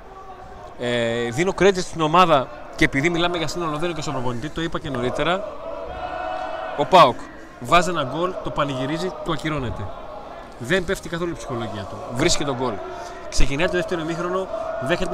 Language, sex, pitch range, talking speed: Greek, male, 140-190 Hz, 165 wpm